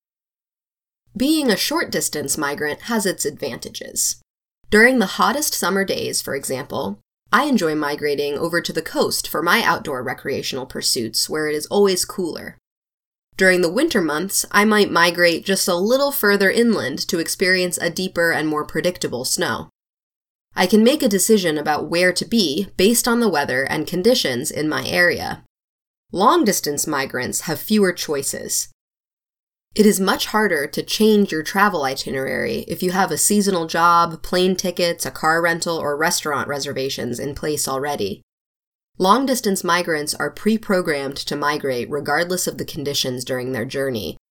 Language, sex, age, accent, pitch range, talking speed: English, female, 20-39, American, 150-200 Hz, 155 wpm